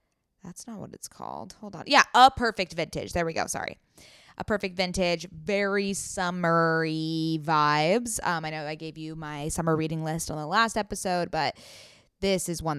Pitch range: 155-200 Hz